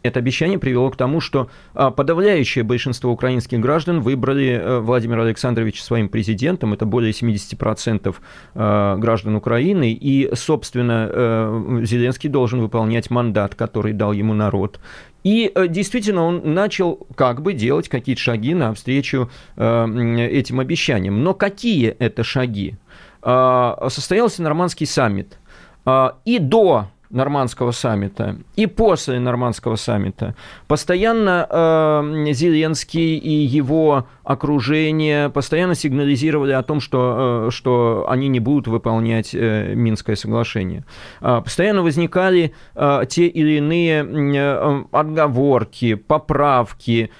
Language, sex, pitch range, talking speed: Russian, male, 120-155 Hz, 110 wpm